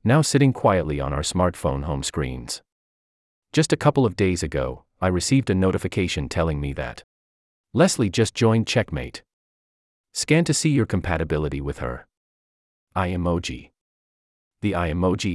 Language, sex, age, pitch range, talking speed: English, male, 40-59, 70-115 Hz, 145 wpm